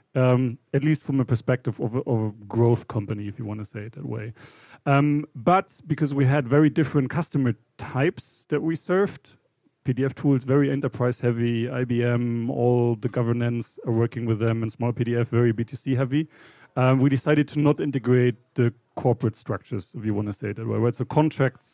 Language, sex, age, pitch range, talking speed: English, male, 40-59, 120-150 Hz, 195 wpm